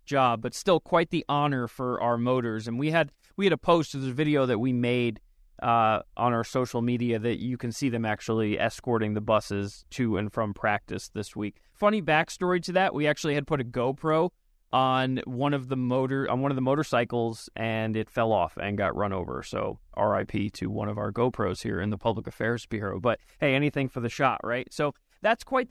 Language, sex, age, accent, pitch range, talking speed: English, male, 30-49, American, 120-160 Hz, 215 wpm